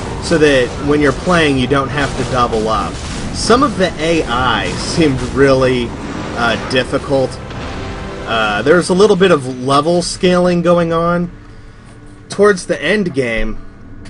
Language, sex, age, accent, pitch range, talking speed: English, male, 30-49, American, 100-130 Hz, 140 wpm